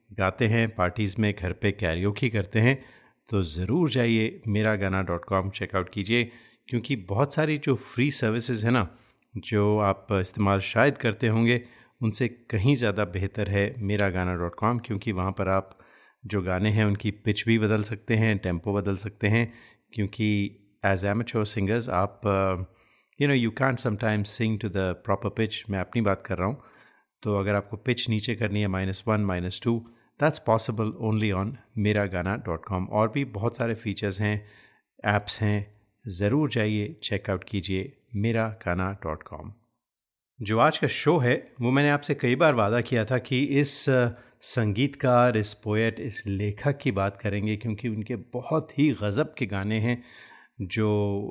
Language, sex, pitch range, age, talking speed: Hindi, male, 100-120 Hz, 30-49, 170 wpm